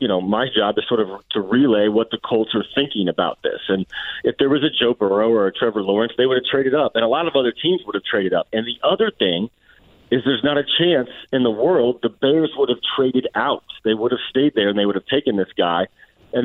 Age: 40-59